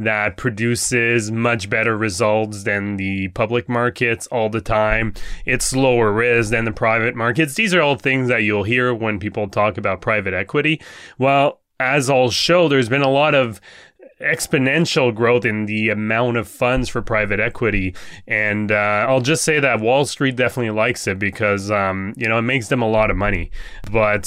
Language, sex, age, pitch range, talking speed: English, male, 20-39, 105-130 Hz, 185 wpm